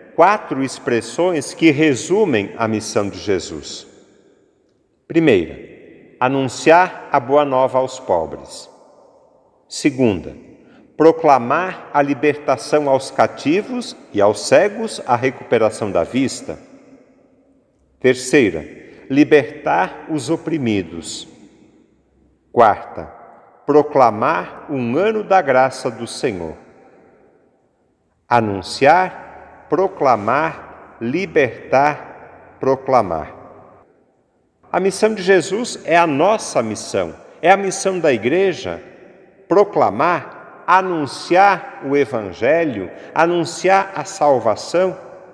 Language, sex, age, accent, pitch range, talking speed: Portuguese, male, 50-69, Brazilian, 130-185 Hz, 85 wpm